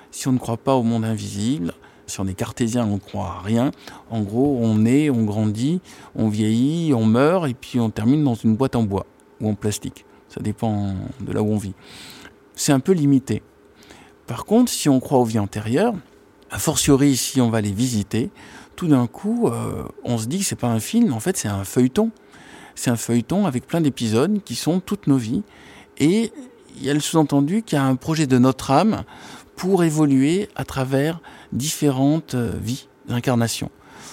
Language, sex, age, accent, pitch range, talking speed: French, male, 50-69, French, 115-145 Hz, 200 wpm